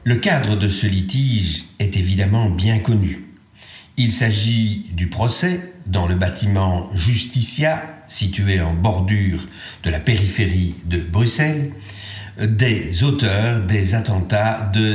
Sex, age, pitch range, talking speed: male, 50-69, 100-125 Hz, 120 wpm